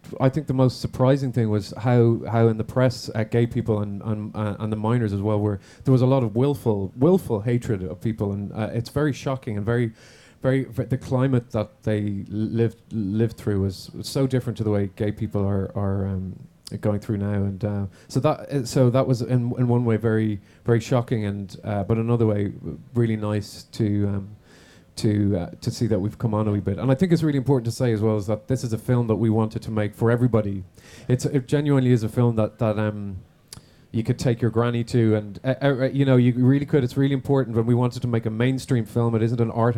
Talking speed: 245 wpm